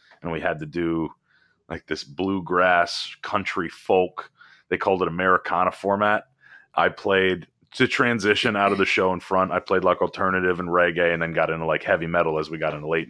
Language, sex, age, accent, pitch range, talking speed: English, male, 30-49, American, 85-105 Hz, 195 wpm